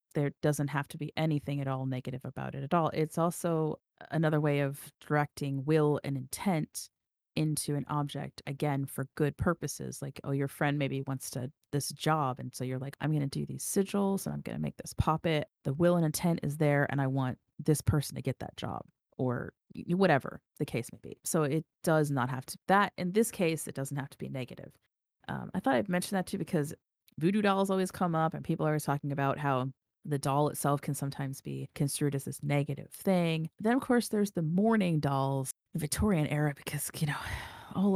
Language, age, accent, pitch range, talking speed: English, 30-49, American, 140-170 Hz, 220 wpm